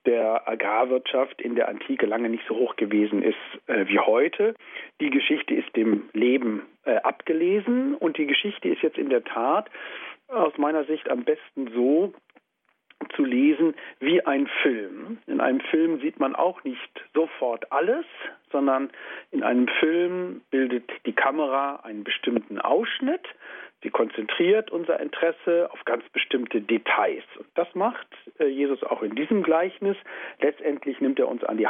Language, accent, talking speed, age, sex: German, German, 155 wpm, 50-69, male